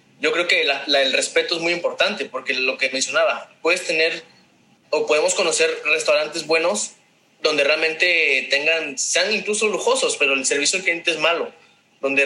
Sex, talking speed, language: male, 170 wpm, Spanish